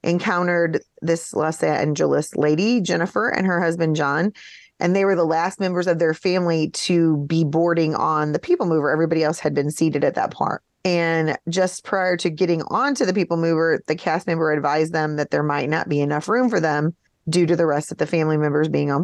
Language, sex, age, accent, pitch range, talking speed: English, female, 30-49, American, 155-180 Hz, 210 wpm